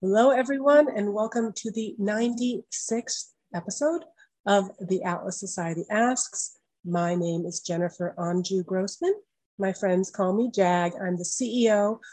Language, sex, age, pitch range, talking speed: English, female, 40-59, 180-230 Hz, 135 wpm